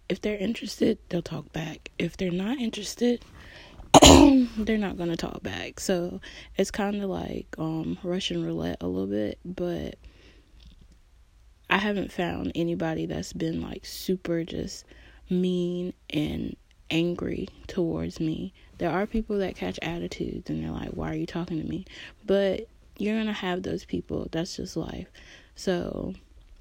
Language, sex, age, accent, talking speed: English, female, 20-39, American, 155 wpm